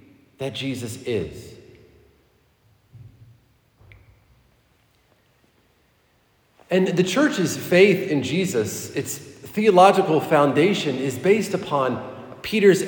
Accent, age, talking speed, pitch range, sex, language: American, 40-59, 75 wpm, 130-180 Hz, male, English